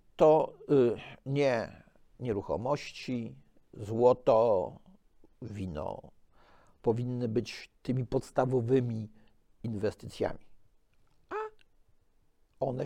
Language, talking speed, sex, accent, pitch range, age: Polish, 55 wpm, male, native, 125-190 Hz, 50-69